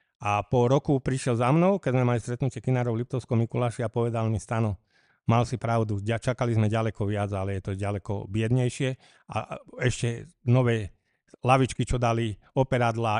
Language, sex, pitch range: Slovak, male, 110-130 Hz